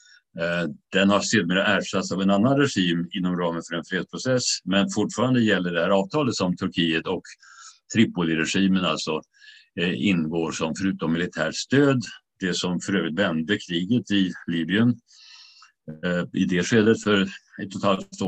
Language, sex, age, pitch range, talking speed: Swedish, male, 60-79, 85-110 Hz, 150 wpm